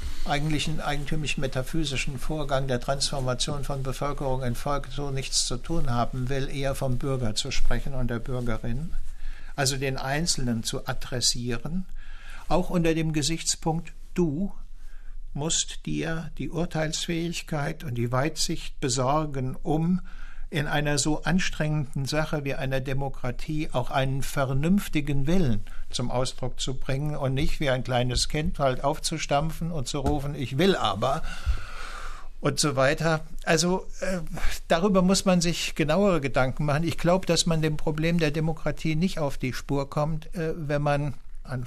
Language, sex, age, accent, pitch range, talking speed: German, male, 60-79, German, 135-160 Hz, 145 wpm